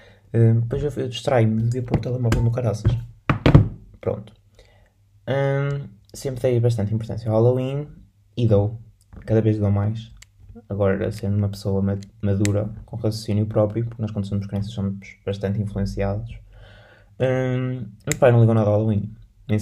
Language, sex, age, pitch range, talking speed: Portuguese, male, 20-39, 105-120 Hz, 155 wpm